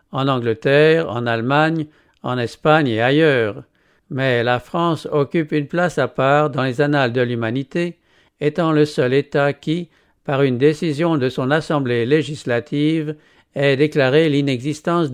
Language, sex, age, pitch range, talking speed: English, male, 60-79, 130-155 Hz, 145 wpm